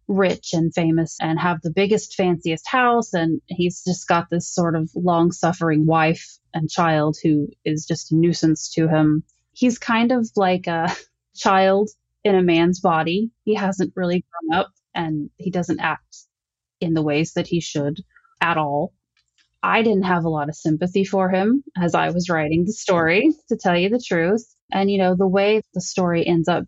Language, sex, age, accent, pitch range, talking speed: English, female, 20-39, American, 165-205 Hz, 185 wpm